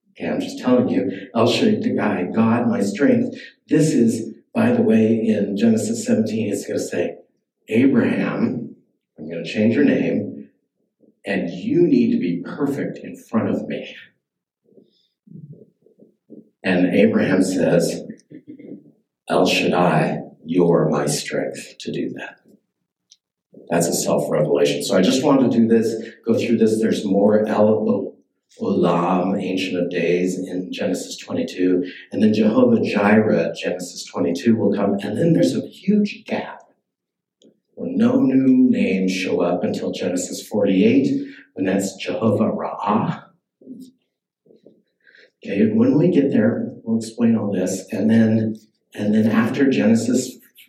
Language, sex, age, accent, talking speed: English, male, 60-79, American, 135 wpm